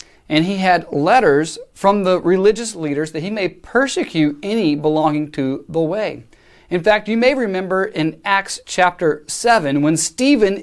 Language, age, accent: English, 30-49, American